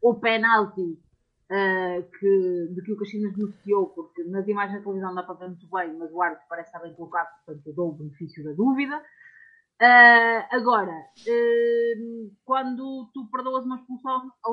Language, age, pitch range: Portuguese, 30-49, 175-245 Hz